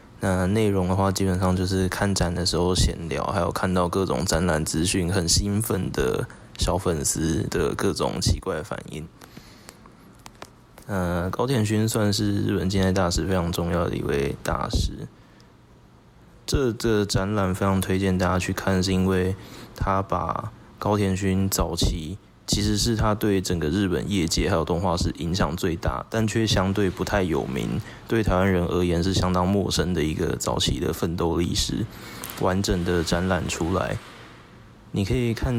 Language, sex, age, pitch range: Chinese, male, 20-39, 90-100 Hz